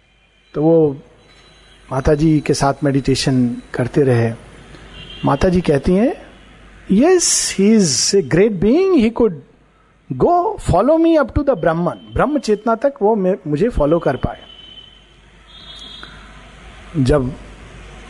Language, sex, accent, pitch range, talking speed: Hindi, male, native, 130-195 Hz, 115 wpm